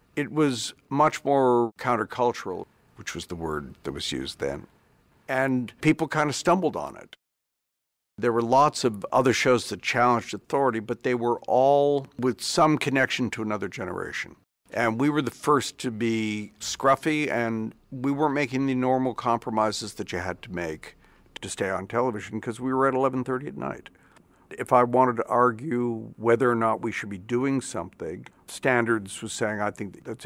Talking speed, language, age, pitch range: 175 wpm, English, 60-79, 110-135 Hz